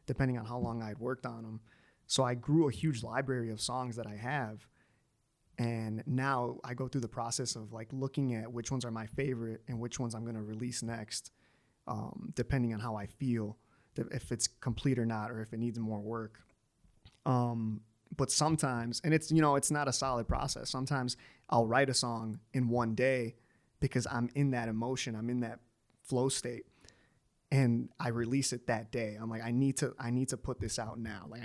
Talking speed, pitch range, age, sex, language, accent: 210 wpm, 115-130 Hz, 20-39, male, English, American